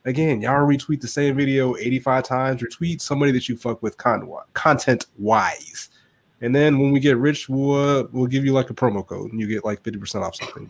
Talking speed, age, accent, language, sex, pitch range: 210 wpm, 20-39, American, English, male, 115-140 Hz